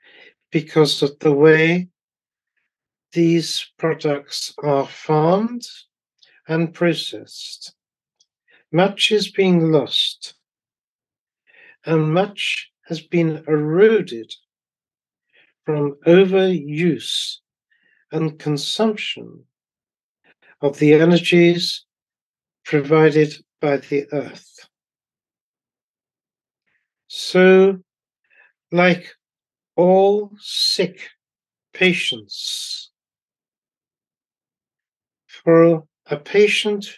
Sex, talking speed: male, 60 wpm